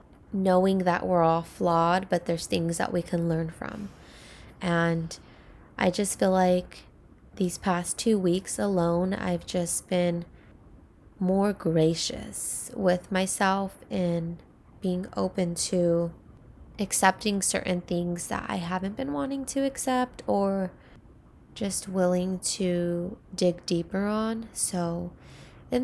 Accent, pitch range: American, 170-195 Hz